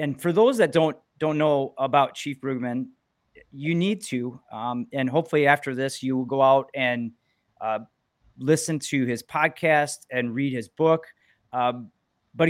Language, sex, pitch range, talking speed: English, male, 130-155 Hz, 165 wpm